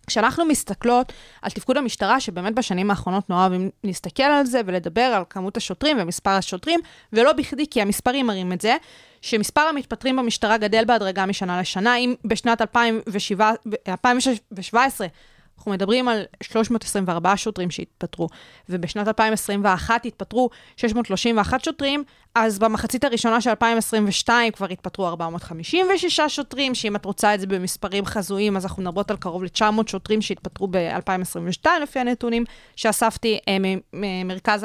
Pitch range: 195-250 Hz